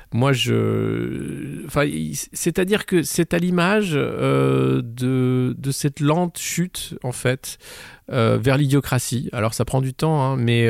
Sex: male